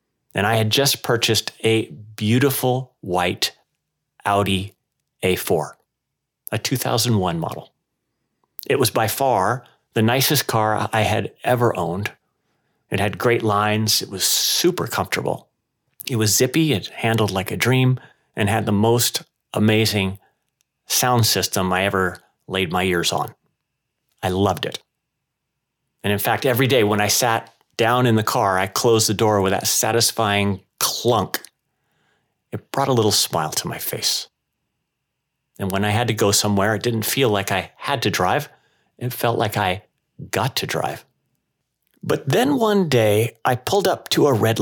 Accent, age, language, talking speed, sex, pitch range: American, 40-59, English, 155 wpm, male, 100-125 Hz